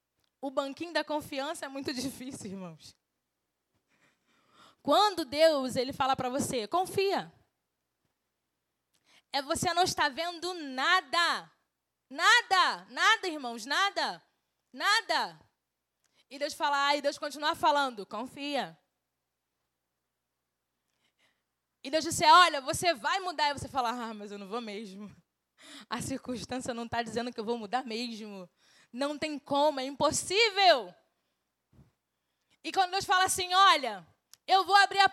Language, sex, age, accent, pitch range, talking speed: Portuguese, female, 10-29, Brazilian, 240-355 Hz, 130 wpm